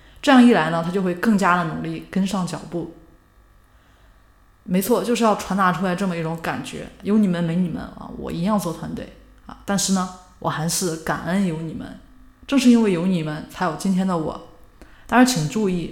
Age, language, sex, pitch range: 20-39, Chinese, female, 160-200 Hz